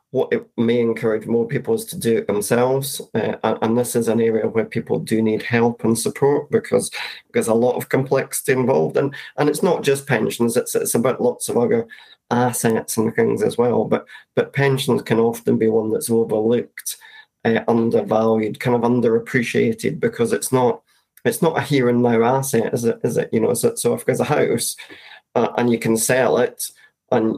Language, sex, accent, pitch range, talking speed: English, male, British, 115-140 Hz, 200 wpm